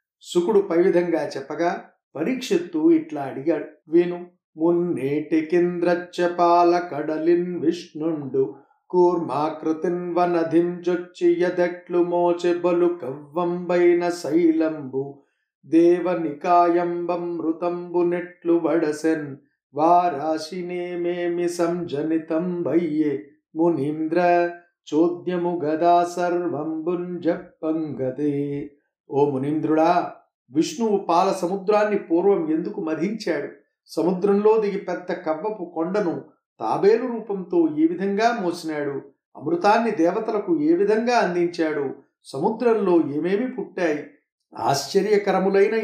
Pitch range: 160-185 Hz